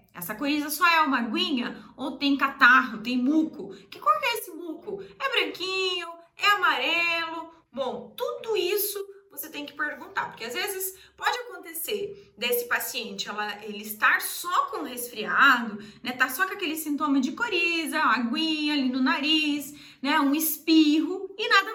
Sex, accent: female, Brazilian